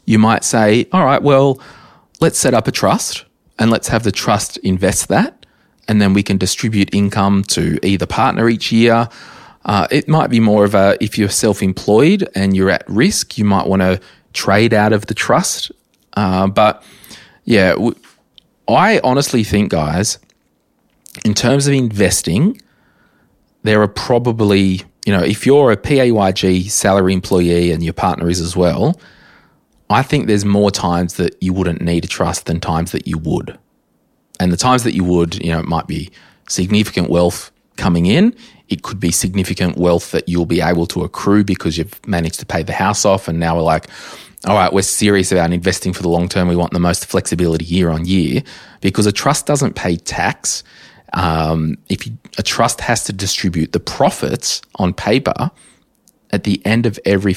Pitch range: 90-105 Hz